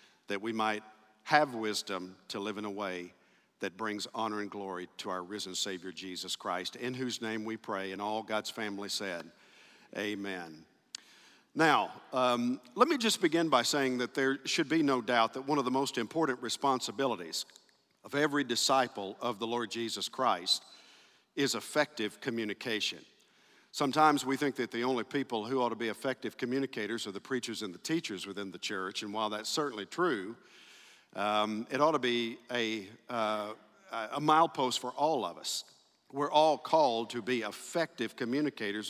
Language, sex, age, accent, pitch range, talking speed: English, male, 50-69, American, 105-135 Hz, 170 wpm